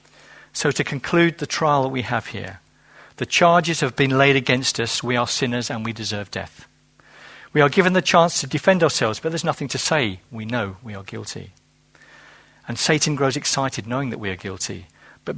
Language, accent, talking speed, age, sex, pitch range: English, British, 200 wpm, 50-69, male, 110-160 Hz